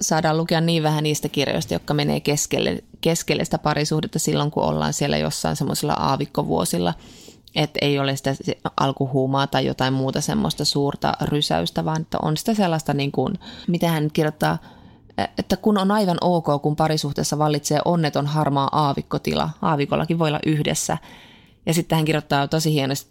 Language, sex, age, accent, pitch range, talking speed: Finnish, female, 20-39, native, 140-160 Hz, 160 wpm